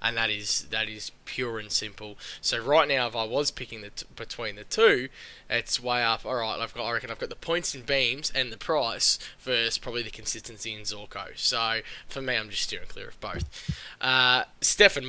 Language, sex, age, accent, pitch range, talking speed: English, male, 10-29, Australian, 115-145 Hz, 220 wpm